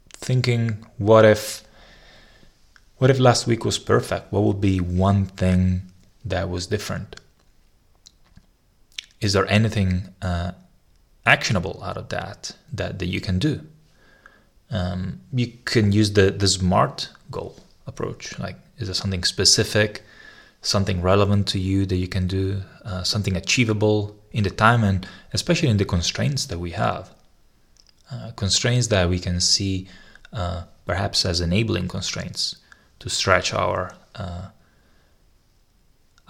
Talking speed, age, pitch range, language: 135 wpm, 20-39, 90-110 Hz, English